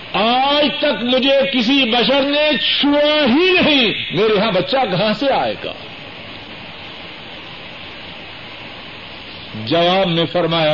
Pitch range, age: 185-270 Hz, 60-79